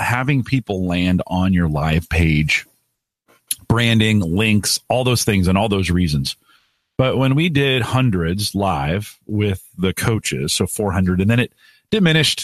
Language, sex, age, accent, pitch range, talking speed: English, male, 40-59, American, 90-125 Hz, 150 wpm